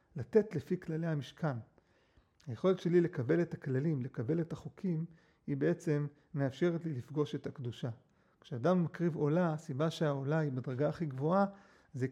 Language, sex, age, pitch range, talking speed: Hebrew, male, 40-59, 135-170 Hz, 145 wpm